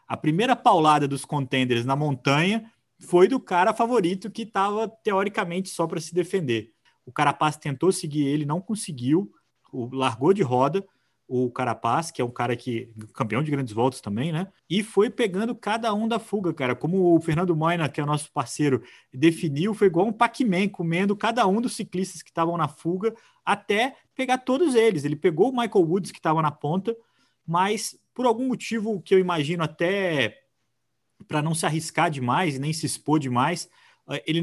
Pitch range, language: 130-185 Hz, Portuguese